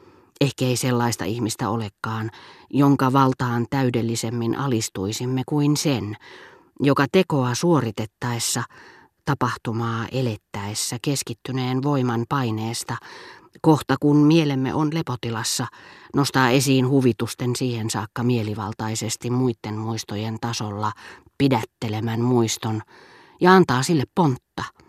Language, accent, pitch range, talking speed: Finnish, native, 115-145 Hz, 95 wpm